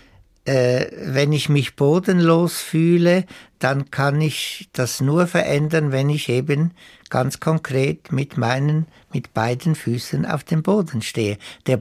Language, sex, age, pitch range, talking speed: German, male, 60-79, 125-155 Hz, 130 wpm